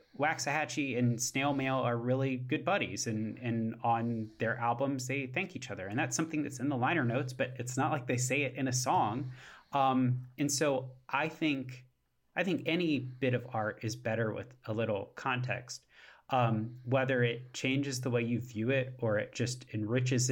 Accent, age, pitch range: American, 30-49, 115-135 Hz